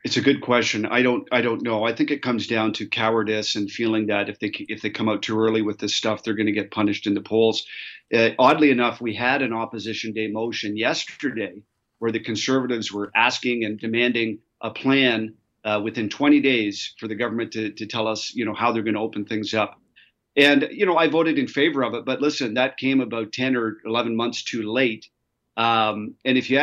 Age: 40-59